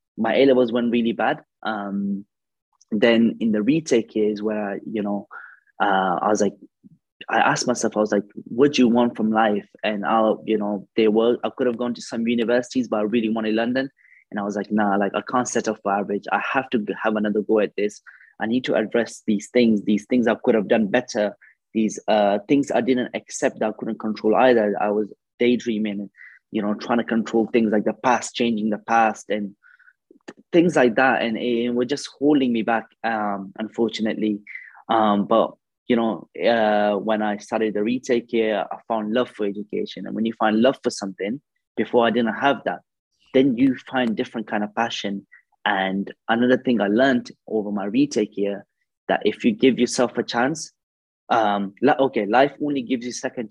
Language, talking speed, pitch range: English, 200 wpm, 105-120 Hz